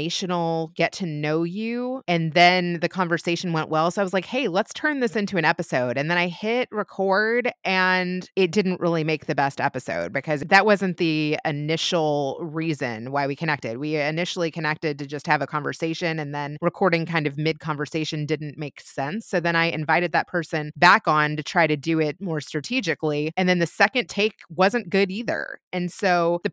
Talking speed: 195 wpm